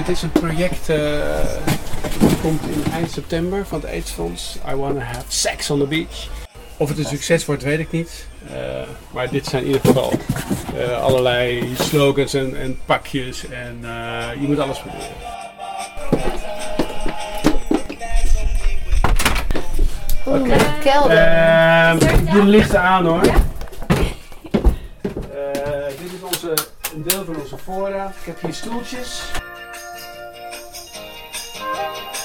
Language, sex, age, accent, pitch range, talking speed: Dutch, male, 50-69, Dutch, 110-155 Hz, 125 wpm